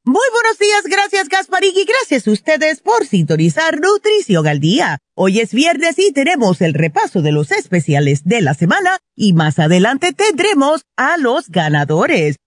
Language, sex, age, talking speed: Spanish, female, 40-59, 160 wpm